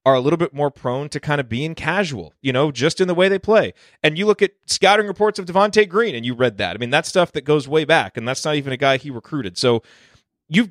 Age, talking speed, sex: 30-49, 280 wpm, male